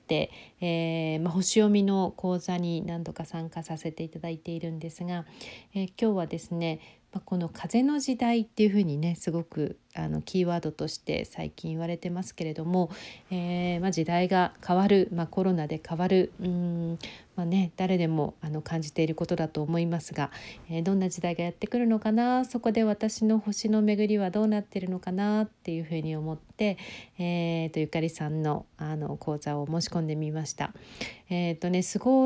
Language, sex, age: Japanese, female, 40-59